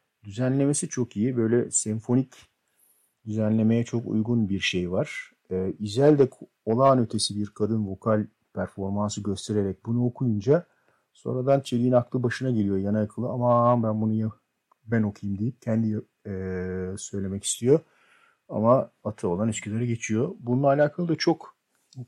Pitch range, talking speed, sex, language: 100-120 Hz, 135 wpm, male, Turkish